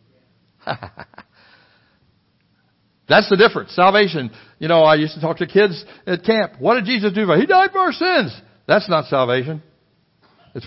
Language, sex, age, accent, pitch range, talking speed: English, male, 60-79, American, 125-195 Hz, 160 wpm